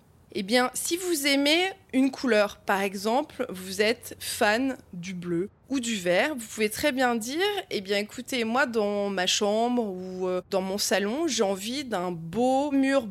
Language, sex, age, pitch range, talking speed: French, female, 20-39, 205-265 Hz, 175 wpm